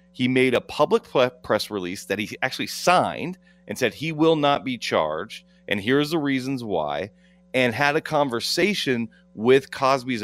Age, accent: 30-49, American